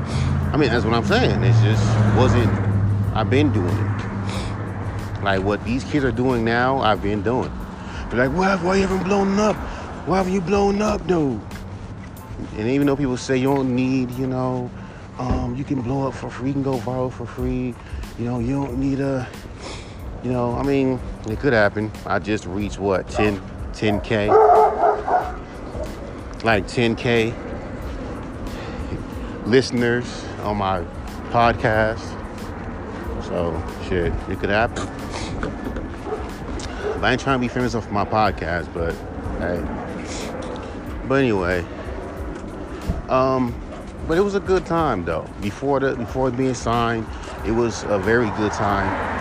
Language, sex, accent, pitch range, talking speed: English, male, American, 95-125 Hz, 150 wpm